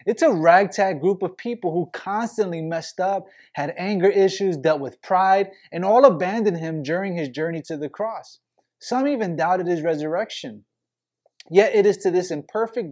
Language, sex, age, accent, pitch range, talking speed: English, male, 20-39, American, 160-205 Hz, 170 wpm